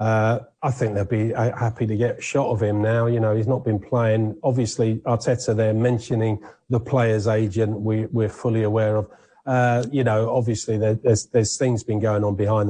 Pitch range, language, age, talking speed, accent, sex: 105-125 Hz, English, 40-59, 200 wpm, British, male